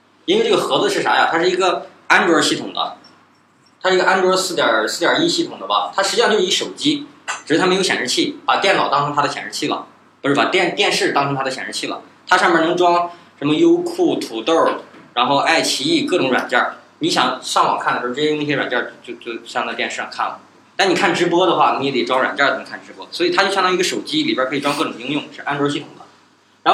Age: 20-39